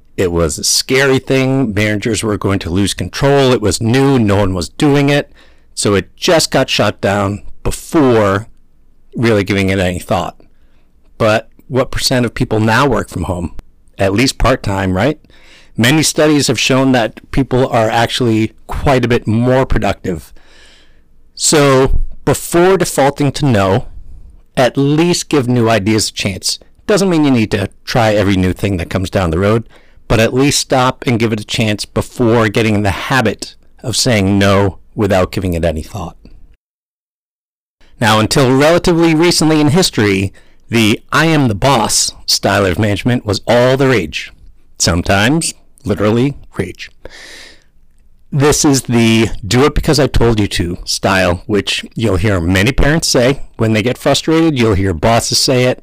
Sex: male